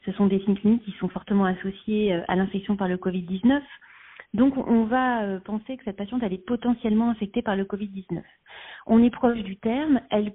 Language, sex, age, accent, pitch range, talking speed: French, female, 40-59, French, 195-235 Hz, 195 wpm